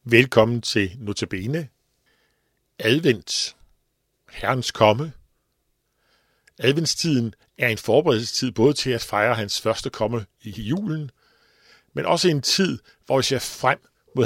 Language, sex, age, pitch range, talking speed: Danish, male, 60-79, 110-140 Hz, 120 wpm